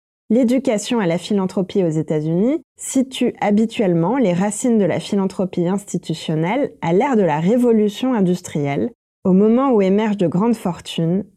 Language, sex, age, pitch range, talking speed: French, female, 20-39, 175-235 Hz, 140 wpm